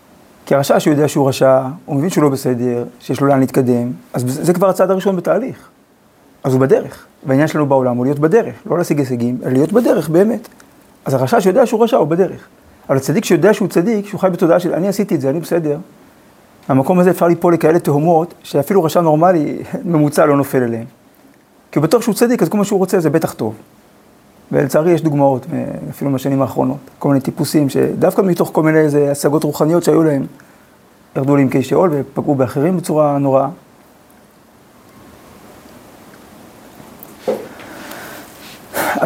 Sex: male